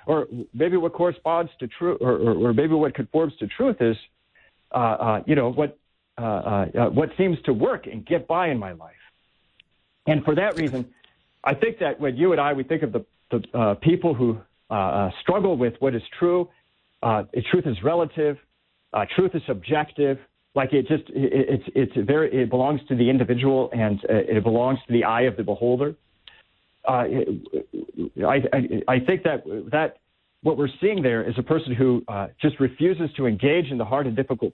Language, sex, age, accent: English, male, 50-69, American